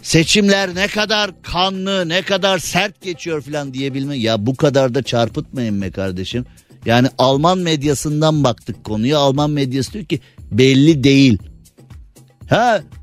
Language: Turkish